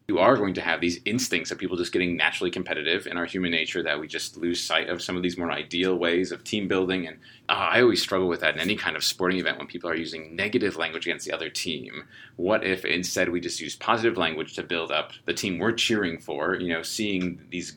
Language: English